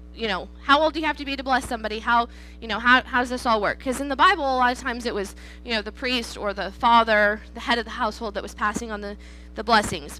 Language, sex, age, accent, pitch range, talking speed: English, female, 20-39, American, 195-255 Hz, 295 wpm